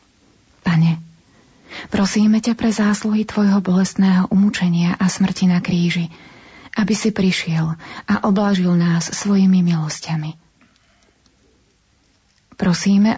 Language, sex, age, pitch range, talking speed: Slovak, female, 30-49, 170-200 Hz, 95 wpm